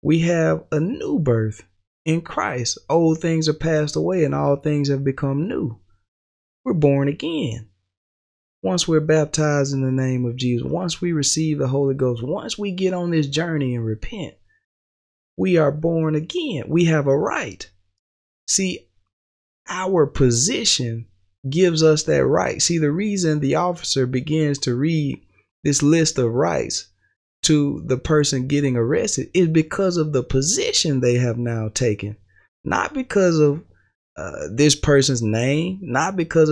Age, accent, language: 20-39, American, English